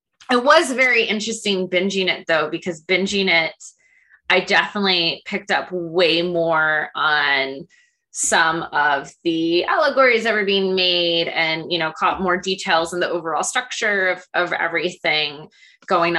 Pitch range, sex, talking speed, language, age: 165-215 Hz, female, 140 wpm, English, 20-39